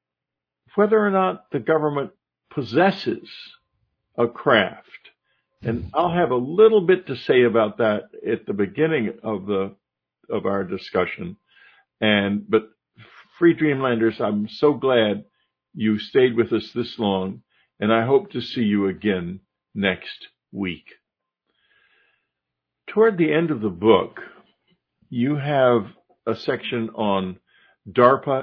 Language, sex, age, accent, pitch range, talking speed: English, male, 60-79, American, 105-155 Hz, 125 wpm